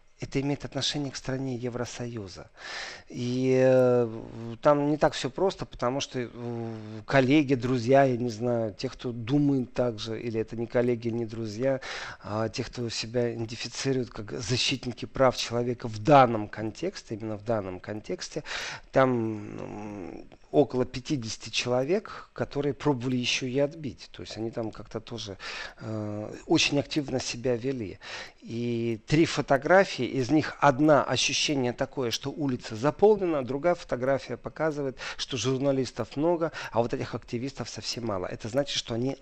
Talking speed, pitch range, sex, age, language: 145 wpm, 115-140 Hz, male, 40-59, Russian